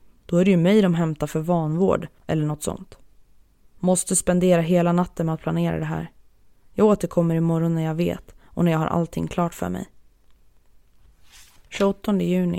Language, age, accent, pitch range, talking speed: Swedish, 20-39, native, 160-180 Hz, 175 wpm